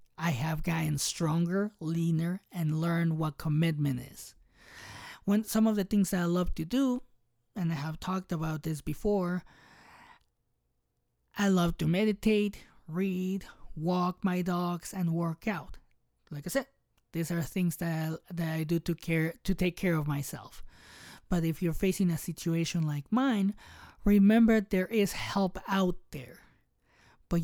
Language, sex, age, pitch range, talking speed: English, male, 20-39, 165-200 Hz, 155 wpm